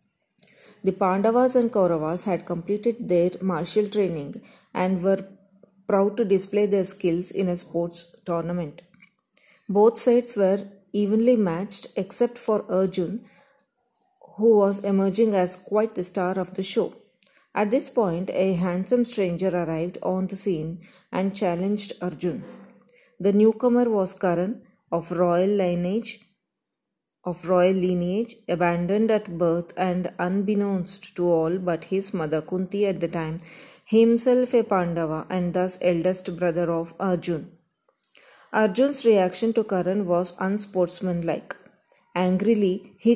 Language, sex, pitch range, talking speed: Kannada, female, 180-210 Hz, 130 wpm